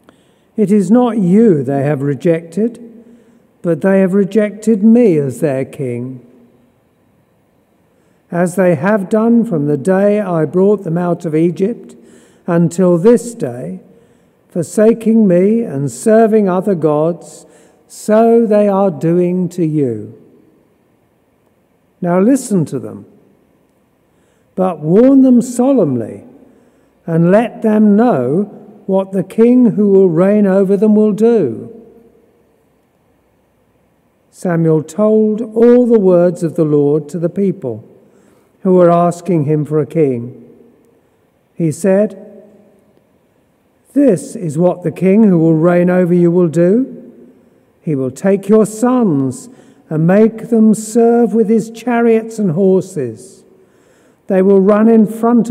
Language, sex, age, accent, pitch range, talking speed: English, male, 50-69, British, 165-220 Hz, 125 wpm